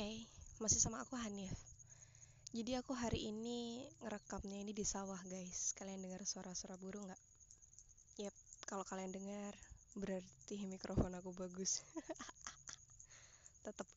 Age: 20-39